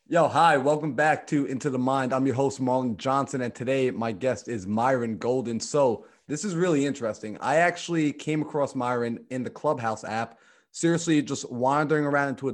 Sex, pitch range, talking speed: male, 115-145 Hz, 190 wpm